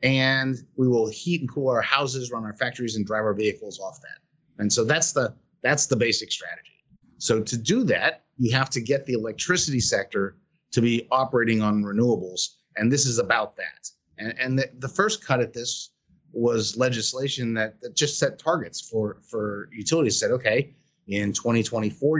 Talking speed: 185 wpm